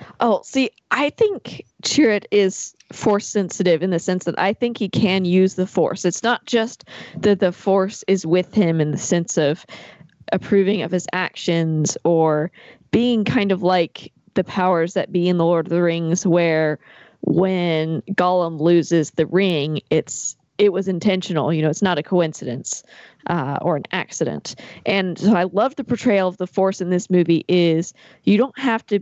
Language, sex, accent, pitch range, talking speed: English, female, American, 170-205 Hz, 180 wpm